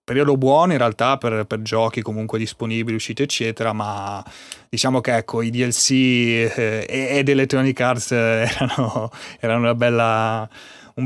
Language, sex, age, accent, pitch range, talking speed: Italian, male, 30-49, native, 105-120 Hz, 135 wpm